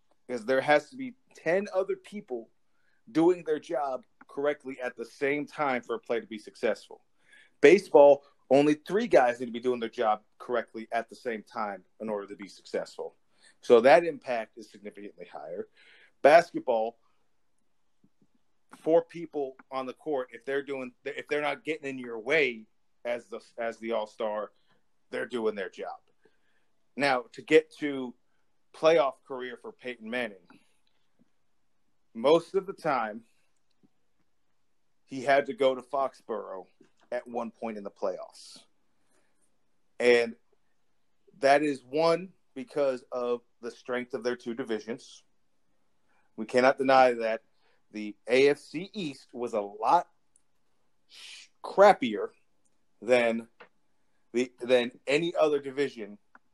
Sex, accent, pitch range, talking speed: male, American, 115-150 Hz, 135 wpm